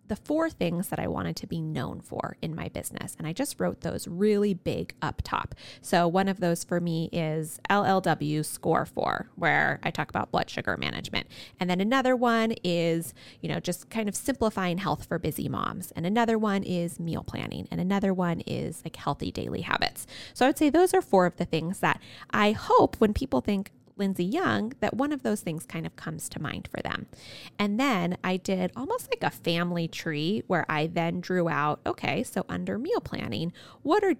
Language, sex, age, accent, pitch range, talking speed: English, female, 20-39, American, 165-225 Hz, 205 wpm